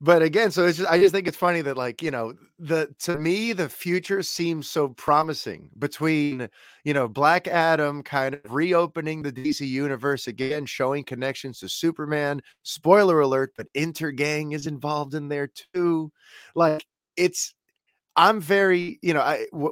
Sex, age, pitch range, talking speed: male, 30-49, 130-160 Hz, 165 wpm